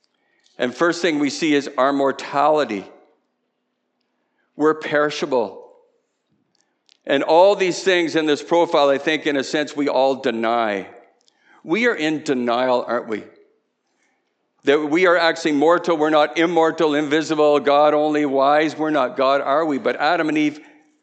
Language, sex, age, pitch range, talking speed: English, male, 50-69, 135-170 Hz, 150 wpm